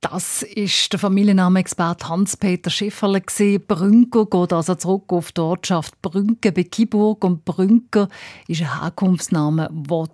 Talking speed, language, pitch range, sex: 130 wpm, German, 170-210 Hz, female